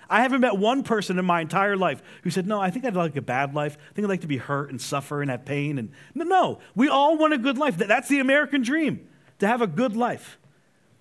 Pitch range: 150-235 Hz